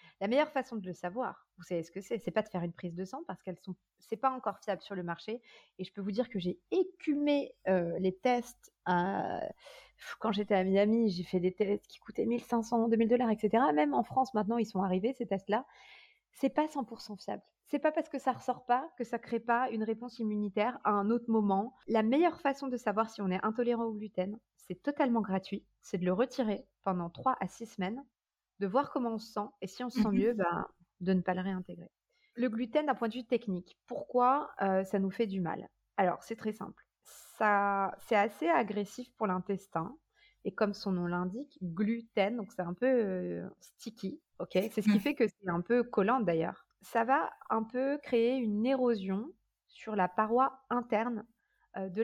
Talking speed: 210 wpm